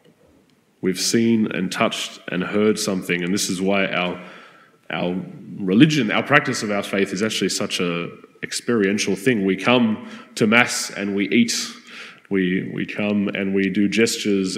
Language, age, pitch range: English, 20-39, 95-115 Hz